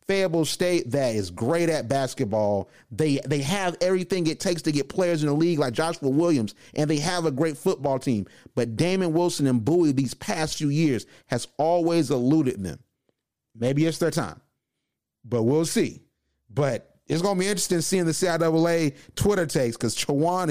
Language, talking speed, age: English, 180 wpm, 30-49